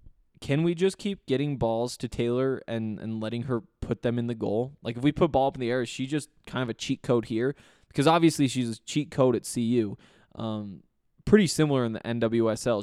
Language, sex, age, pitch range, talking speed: English, male, 20-39, 115-140 Hz, 230 wpm